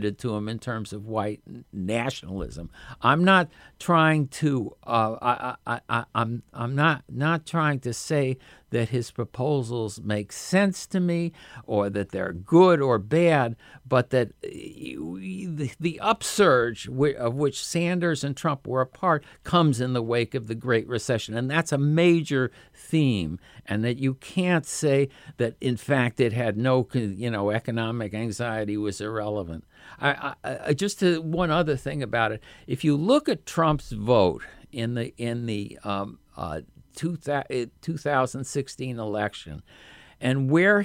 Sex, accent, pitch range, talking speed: male, American, 110-150 Hz, 155 wpm